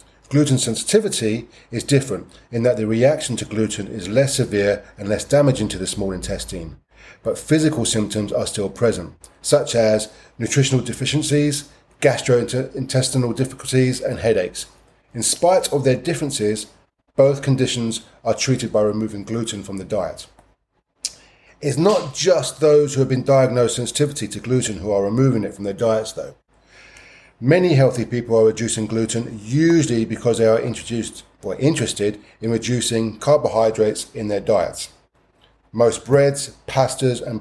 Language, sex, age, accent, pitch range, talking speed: English, male, 30-49, British, 105-135 Hz, 145 wpm